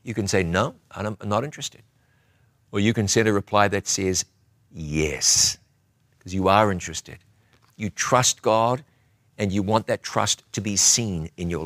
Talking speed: 170 wpm